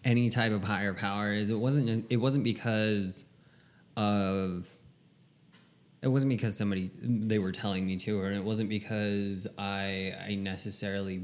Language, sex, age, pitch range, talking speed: English, male, 20-39, 105-120 Hz, 150 wpm